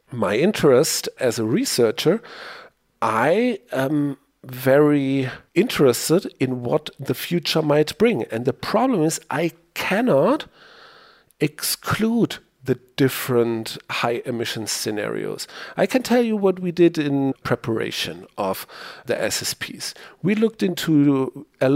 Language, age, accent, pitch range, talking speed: English, 40-59, German, 125-185 Hz, 120 wpm